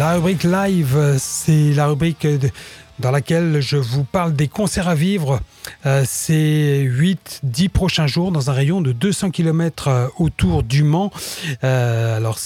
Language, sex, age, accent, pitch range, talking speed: French, male, 30-49, French, 135-170 Hz, 140 wpm